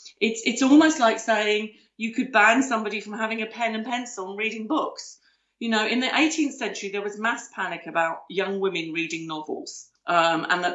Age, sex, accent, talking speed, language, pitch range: 40-59, female, British, 200 wpm, English, 175-240 Hz